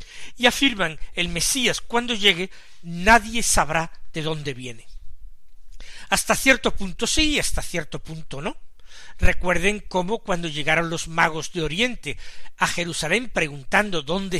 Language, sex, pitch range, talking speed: Spanish, male, 155-210 Hz, 130 wpm